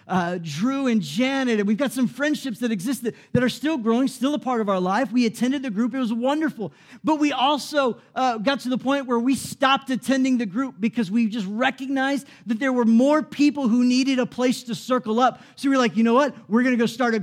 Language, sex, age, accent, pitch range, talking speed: English, male, 40-59, American, 180-250 Hz, 245 wpm